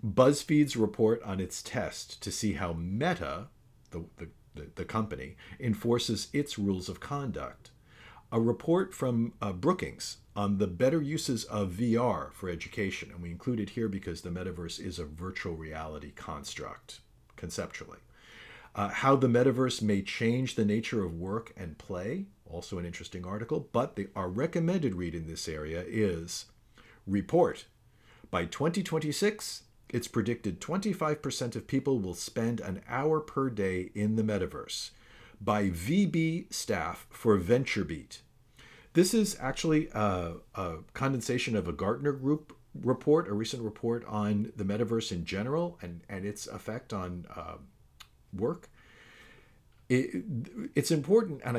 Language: English